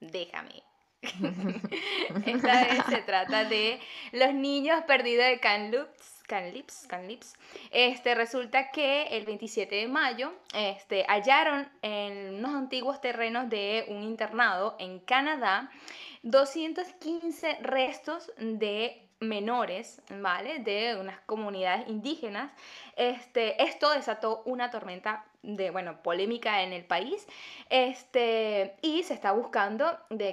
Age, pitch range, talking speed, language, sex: 10-29, 205-265 Hz, 105 wpm, Spanish, female